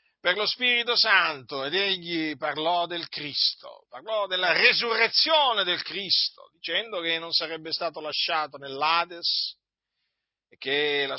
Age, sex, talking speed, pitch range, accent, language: 50-69, male, 130 wpm, 145-210 Hz, native, Italian